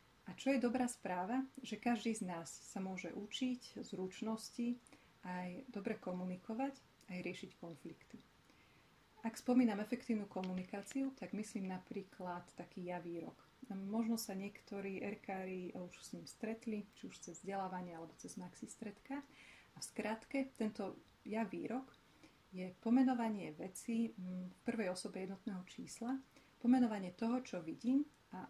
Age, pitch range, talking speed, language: 40-59, 185-230 Hz, 130 wpm, Slovak